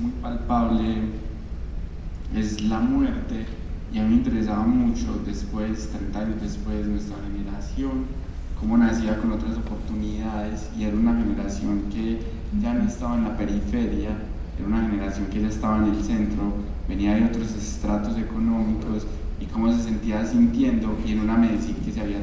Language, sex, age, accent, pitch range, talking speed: Spanish, male, 20-39, Colombian, 105-130 Hz, 160 wpm